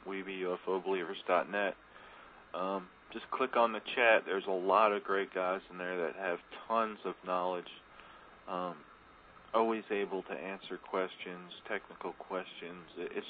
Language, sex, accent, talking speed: English, male, American, 140 wpm